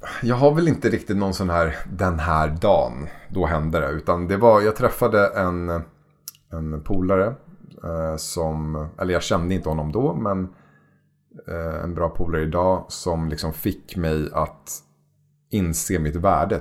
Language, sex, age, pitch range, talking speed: English, male, 30-49, 80-100 Hz, 160 wpm